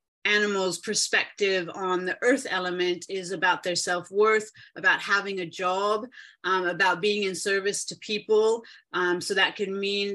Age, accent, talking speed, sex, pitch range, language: 30-49, American, 155 wpm, female, 180-215 Hz, English